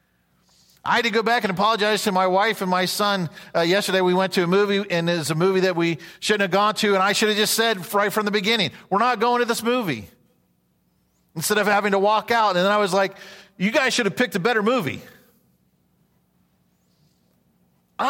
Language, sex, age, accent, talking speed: English, male, 40-59, American, 220 wpm